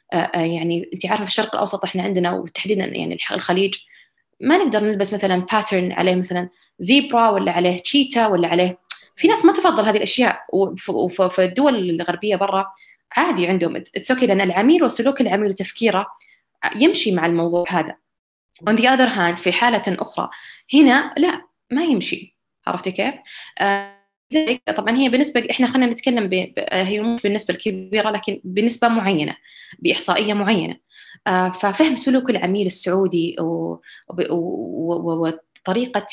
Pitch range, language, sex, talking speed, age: 185-245 Hz, Arabic, female, 140 wpm, 20-39